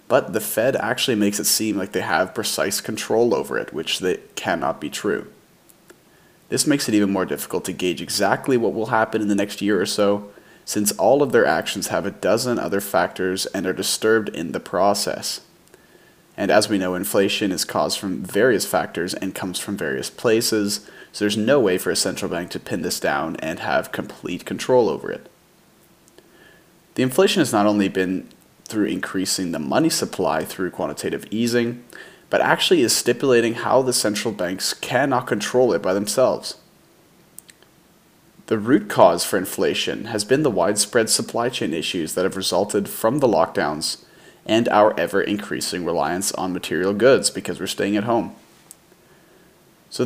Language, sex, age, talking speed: English, male, 20-39, 175 wpm